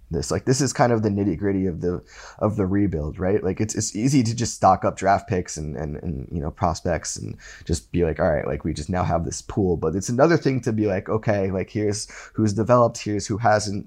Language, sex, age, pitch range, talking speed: English, male, 20-39, 85-105 Hz, 250 wpm